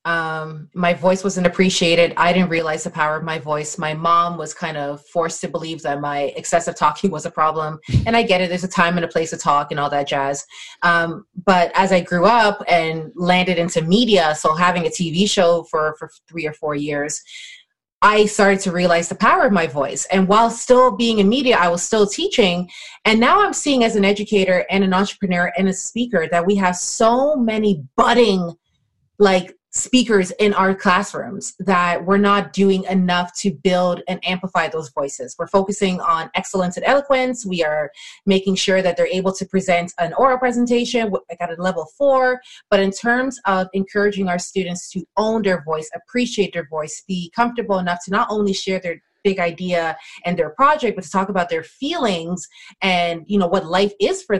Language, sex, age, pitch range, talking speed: English, female, 30-49, 170-205 Hz, 200 wpm